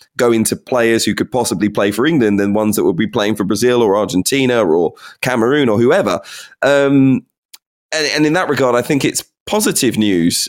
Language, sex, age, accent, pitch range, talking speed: English, male, 20-39, British, 100-120 Hz, 195 wpm